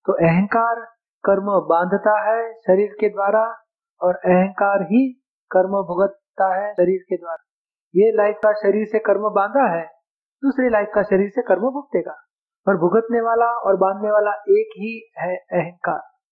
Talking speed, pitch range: 155 wpm, 185-220 Hz